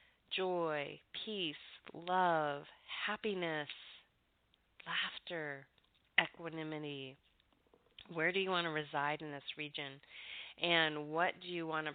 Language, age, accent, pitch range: English, 30-49, American, 150-175 Hz